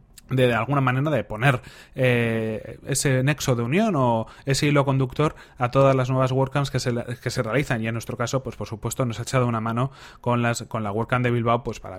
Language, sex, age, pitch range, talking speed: Spanish, male, 30-49, 120-140 Hz, 230 wpm